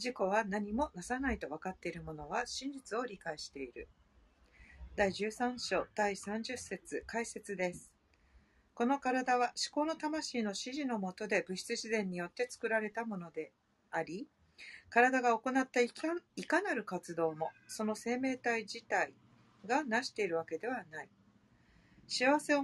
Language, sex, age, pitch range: Japanese, female, 50-69, 195-265 Hz